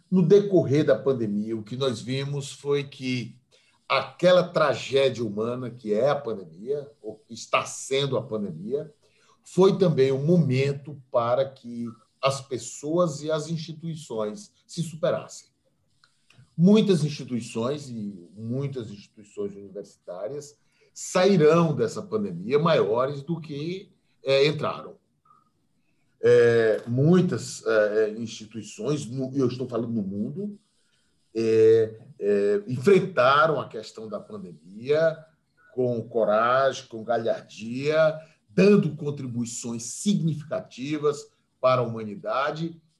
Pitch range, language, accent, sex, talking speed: 120-180 Hz, Portuguese, Brazilian, male, 100 wpm